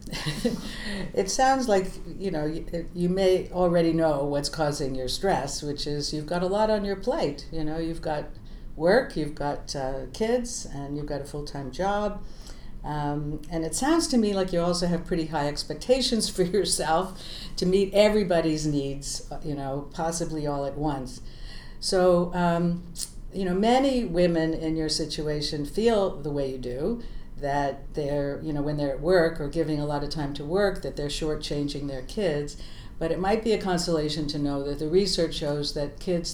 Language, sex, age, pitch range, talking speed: English, female, 60-79, 145-175 Hz, 185 wpm